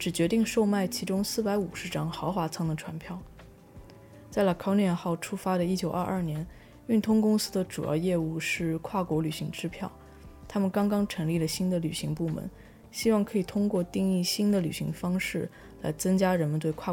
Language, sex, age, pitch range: Chinese, female, 20-39, 160-190 Hz